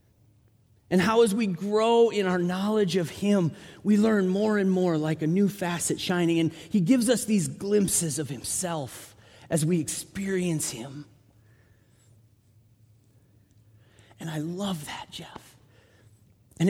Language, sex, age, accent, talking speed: English, male, 30-49, American, 135 wpm